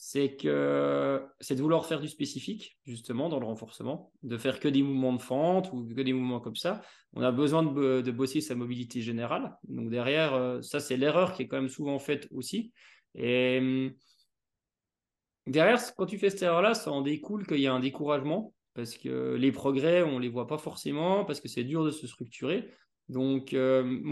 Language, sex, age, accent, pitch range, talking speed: French, male, 20-39, French, 130-170 Hz, 200 wpm